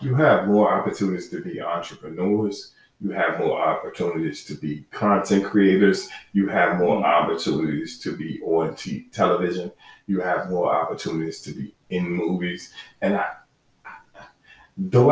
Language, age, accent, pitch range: English, 40-59, American, 90-150 Hz